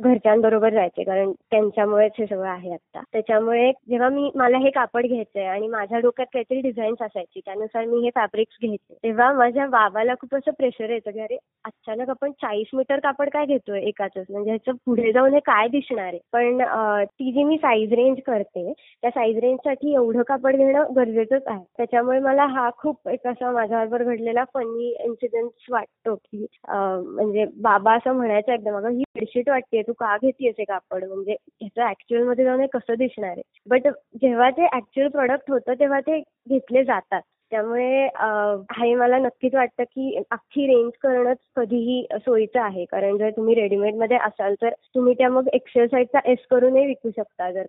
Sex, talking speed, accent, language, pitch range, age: female, 170 wpm, native, Marathi, 215-260 Hz, 20-39